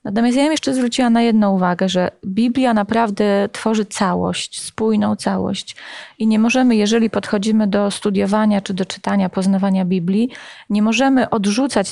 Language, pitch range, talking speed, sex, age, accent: Polish, 195-230 Hz, 150 wpm, female, 30-49, native